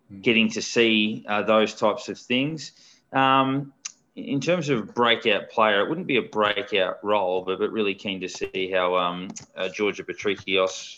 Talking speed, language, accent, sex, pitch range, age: 170 wpm, English, Australian, male, 100-115 Hz, 20-39